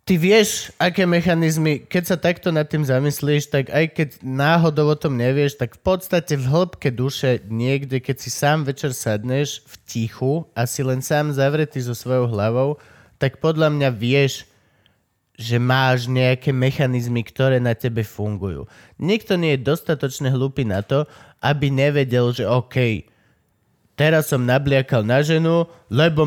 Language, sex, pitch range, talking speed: Slovak, male, 125-165 Hz, 160 wpm